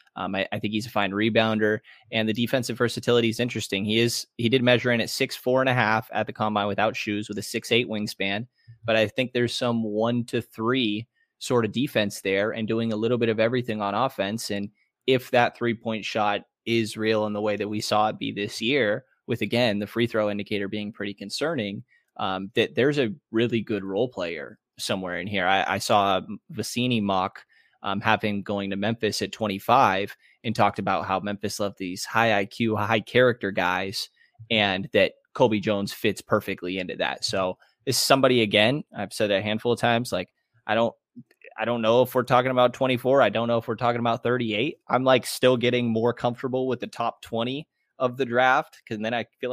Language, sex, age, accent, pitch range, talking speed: English, male, 20-39, American, 105-120 Hz, 210 wpm